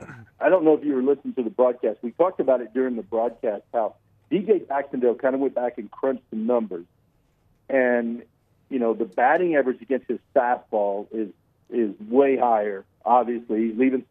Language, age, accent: English, 50-69, American